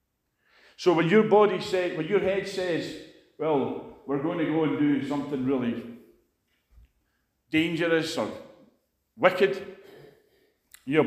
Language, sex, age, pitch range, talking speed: English, male, 50-69, 125-175 Hz, 120 wpm